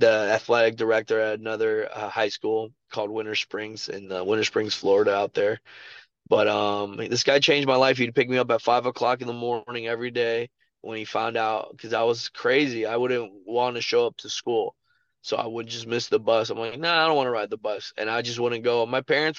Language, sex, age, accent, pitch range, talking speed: English, male, 20-39, American, 115-130 Hz, 240 wpm